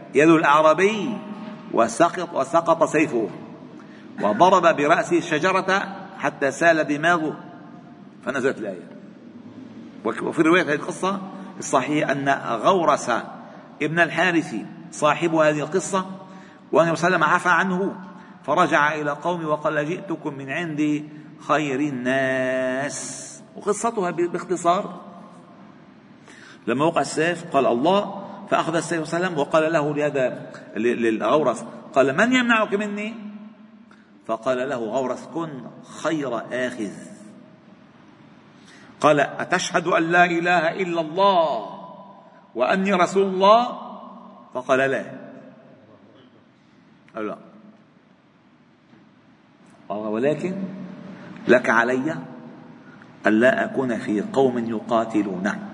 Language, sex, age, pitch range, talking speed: Arabic, male, 50-69, 150-200 Hz, 90 wpm